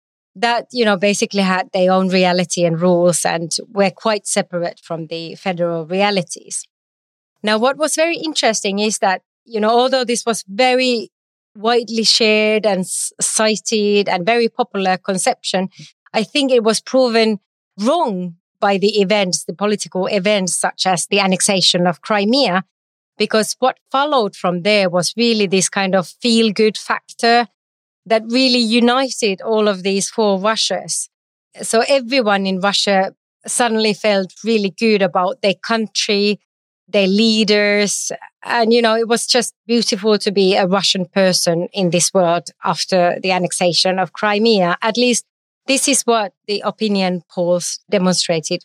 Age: 30-49